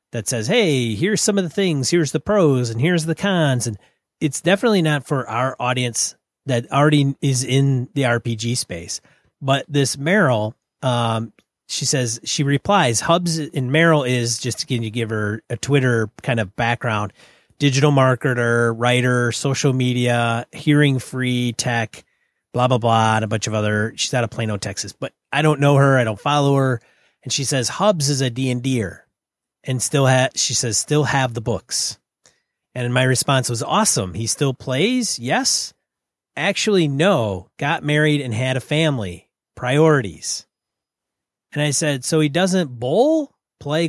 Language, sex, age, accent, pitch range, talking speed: English, male, 30-49, American, 120-155 Hz, 165 wpm